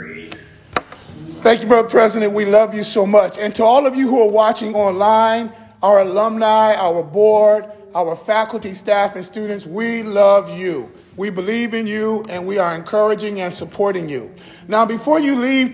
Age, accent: 40-59, American